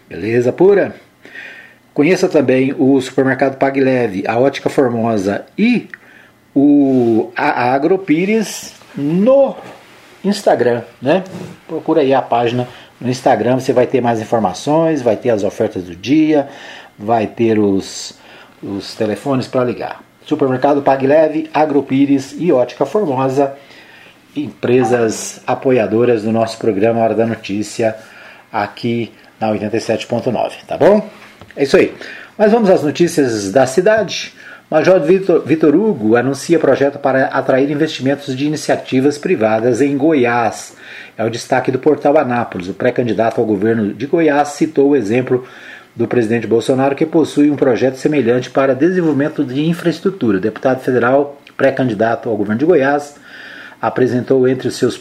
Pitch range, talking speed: 120-150 Hz, 130 wpm